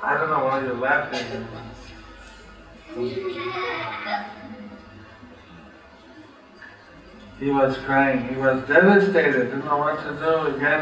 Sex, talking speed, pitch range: male, 105 wpm, 125-145 Hz